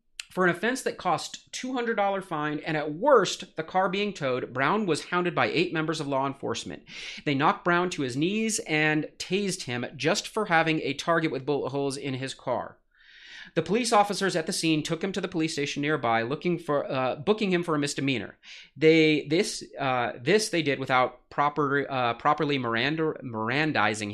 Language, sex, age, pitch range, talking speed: English, male, 30-49, 135-175 Hz, 190 wpm